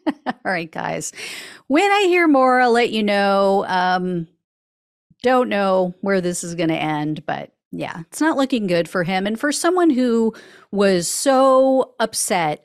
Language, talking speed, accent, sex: English, 165 wpm, American, female